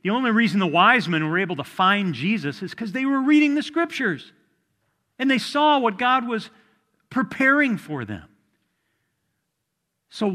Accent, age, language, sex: American, 50-69, English, male